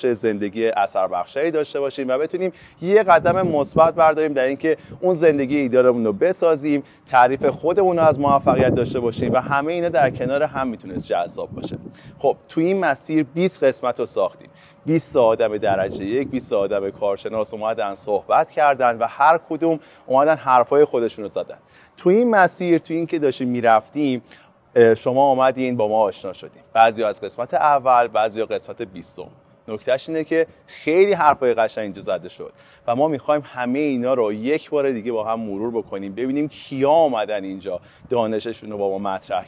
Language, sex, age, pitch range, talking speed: Persian, male, 30-49, 115-155 Hz, 170 wpm